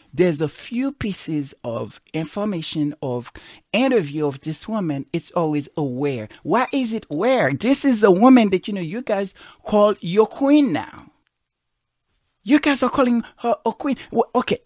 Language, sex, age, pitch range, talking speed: English, male, 60-79, 145-225 Hz, 160 wpm